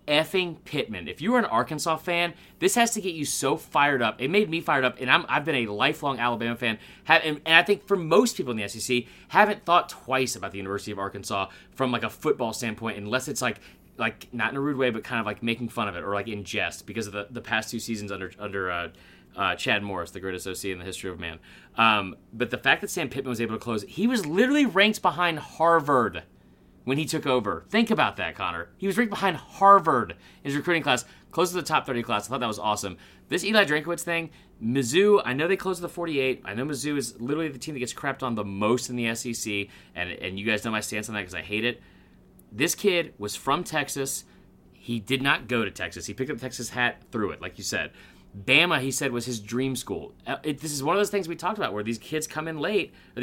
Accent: American